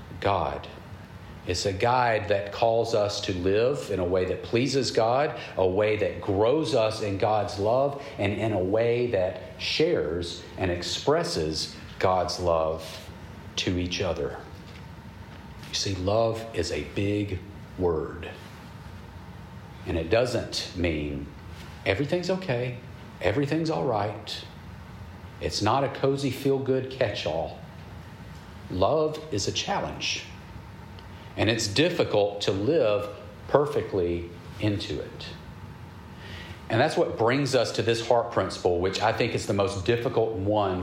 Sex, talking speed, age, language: male, 130 wpm, 40-59, English